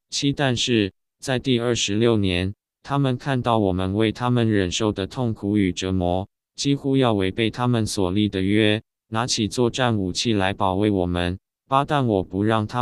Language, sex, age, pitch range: Chinese, male, 20-39, 100-120 Hz